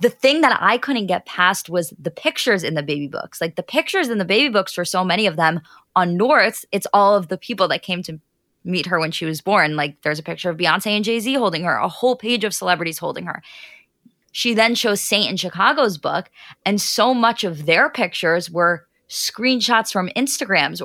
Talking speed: 220 wpm